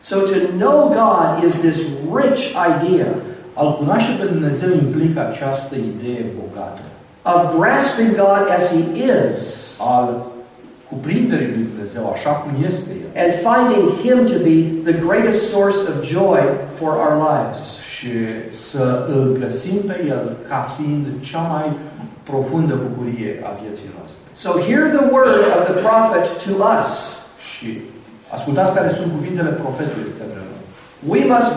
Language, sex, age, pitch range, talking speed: Romanian, male, 50-69, 135-185 Hz, 80 wpm